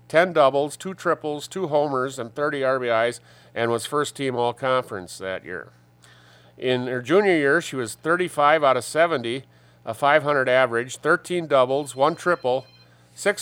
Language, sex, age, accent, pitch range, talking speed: English, male, 40-59, American, 115-155 Hz, 150 wpm